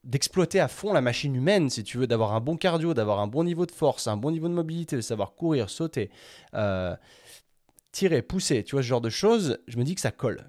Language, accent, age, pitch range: French, French, 20-39, 105-145 Hz